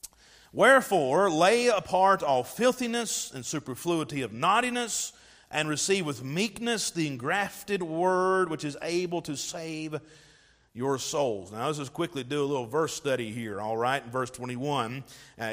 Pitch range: 140-195 Hz